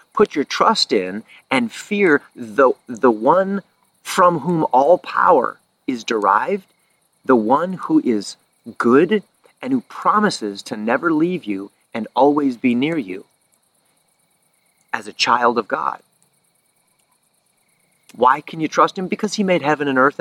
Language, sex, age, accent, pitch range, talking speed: English, male, 40-59, American, 140-190 Hz, 145 wpm